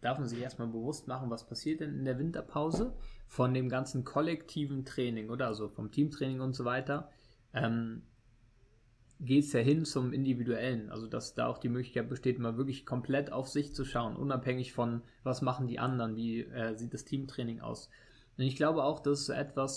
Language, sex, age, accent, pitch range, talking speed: German, male, 20-39, German, 120-135 Hz, 195 wpm